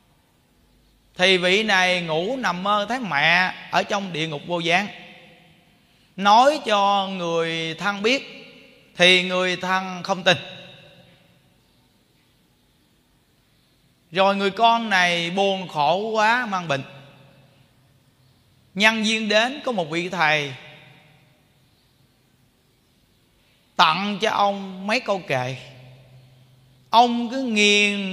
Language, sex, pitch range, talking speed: Vietnamese, male, 140-205 Hz, 105 wpm